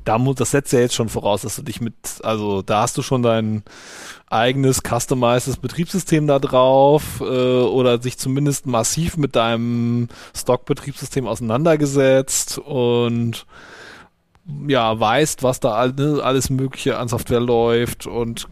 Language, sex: German, male